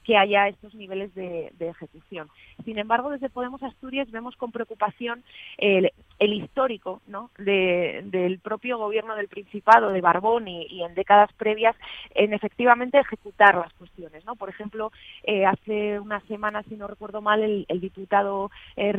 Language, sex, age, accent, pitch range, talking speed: Spanish, female, 30-49, Spanish, 190-220 Hz, 165 wpm